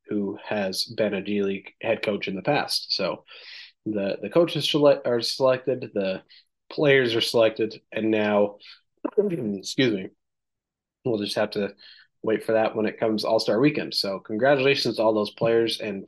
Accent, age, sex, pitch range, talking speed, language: American, 30-49, male, 105-125 Hz, 170 wpm, English